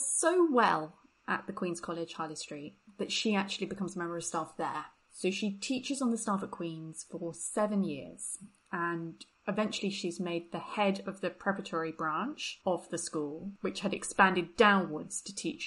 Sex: female